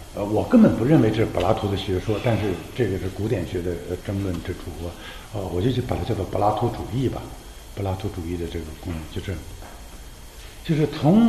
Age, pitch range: 60-79, 95-140 Hz